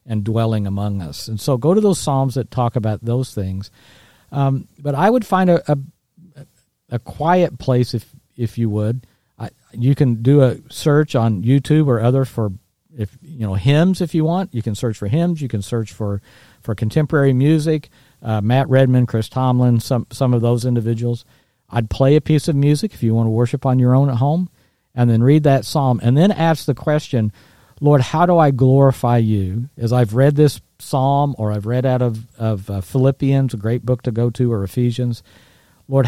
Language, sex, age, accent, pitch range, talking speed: English, male, 50-69, American, 110-135 Hz, 205 wpm